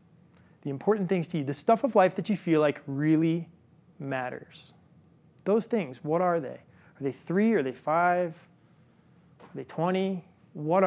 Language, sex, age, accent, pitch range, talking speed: English, male, 30-49, American, 145-175 Hz, 165 wpm